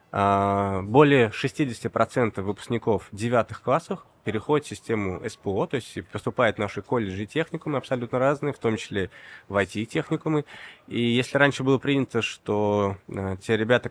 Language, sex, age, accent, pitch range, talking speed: Russian, male, 20-39, native, 105-135 Hz, 140 wpm